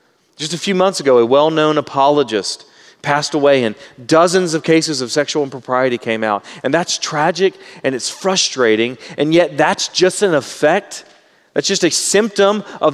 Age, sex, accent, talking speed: 40-59, male, American, 165 wpm